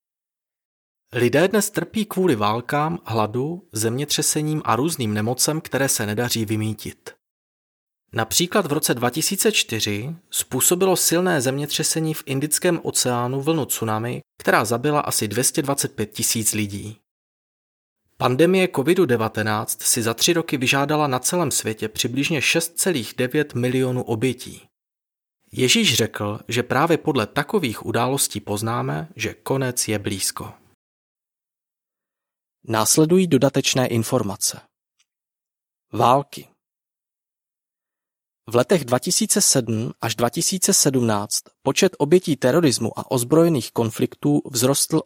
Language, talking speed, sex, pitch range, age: Czech, 100 wpm, male, 115-160 Hz, 30-49